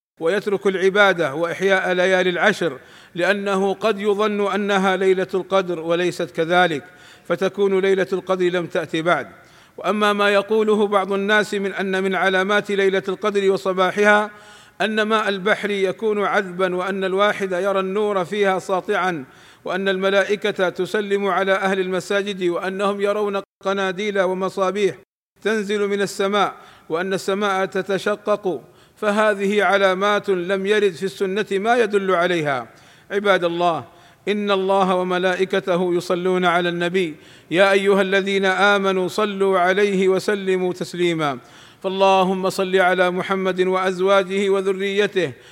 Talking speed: 115 wpm